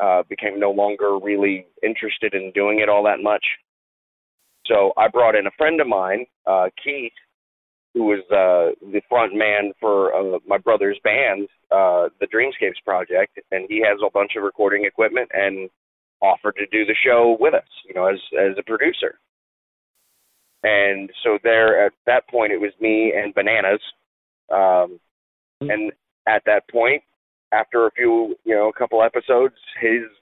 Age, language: 30-49, English